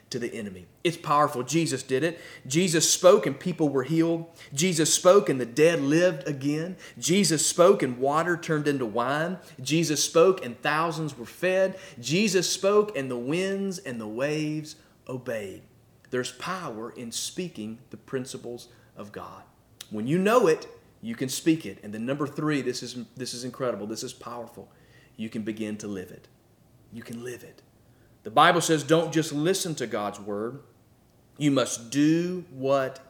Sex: male